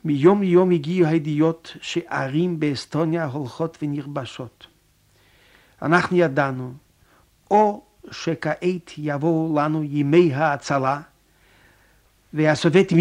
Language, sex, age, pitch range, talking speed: Hebrew, male, 50-69, 130-165 Hz, 80 wpm